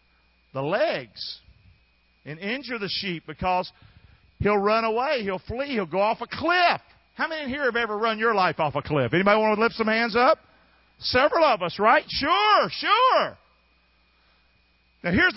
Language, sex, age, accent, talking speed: English, male, 50-69, American, 170 wpm